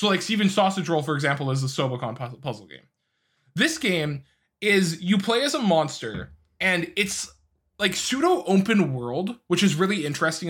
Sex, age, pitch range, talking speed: male, 20-39, 145-210 Hz, 170 wpm